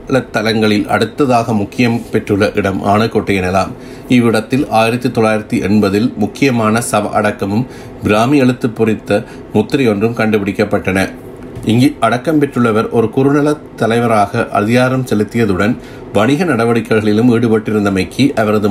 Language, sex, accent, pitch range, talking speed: Tamil, male, native, 105-125 Hz, 95 wpm